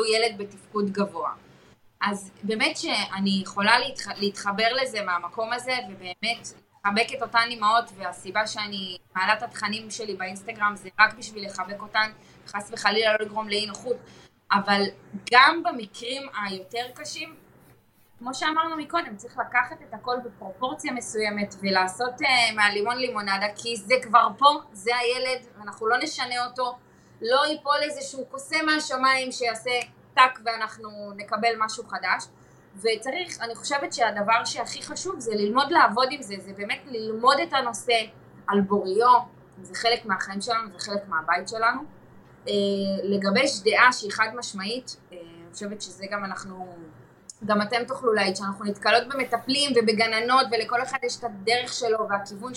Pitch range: 205-250 Hz